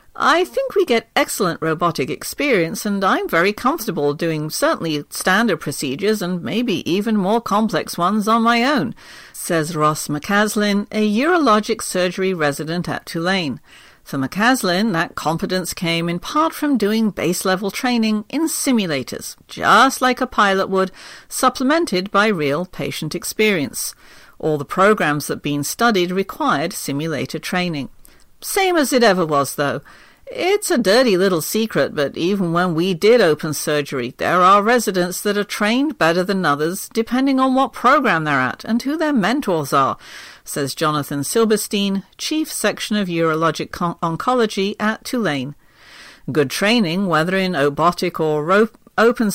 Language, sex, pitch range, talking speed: English, female, 165-230 Hz, 150 wpm